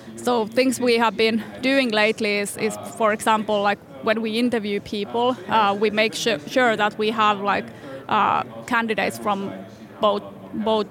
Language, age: Finnish, 30-49